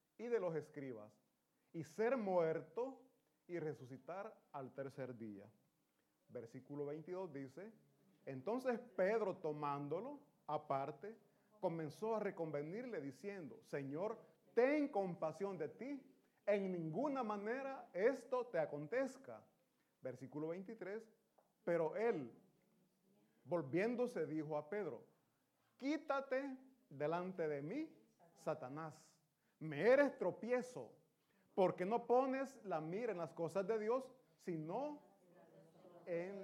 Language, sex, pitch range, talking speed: Italian, male, 155-225 Hz, 100 wpm